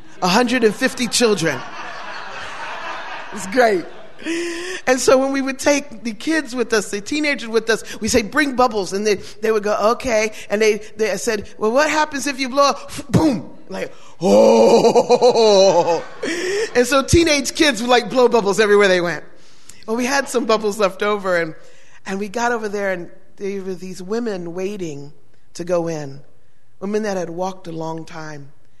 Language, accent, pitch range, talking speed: English, American, 180-235 Hz, 175 wpm